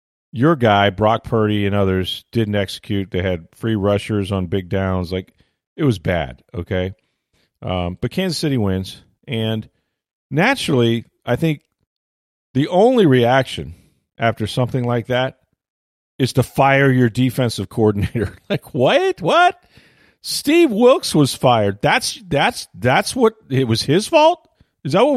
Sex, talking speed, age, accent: male, 145 wpm, 40-59, American